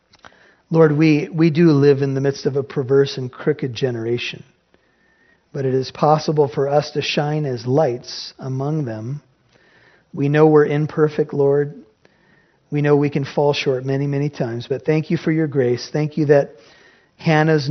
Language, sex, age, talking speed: English, male, 40-59, 170 wpm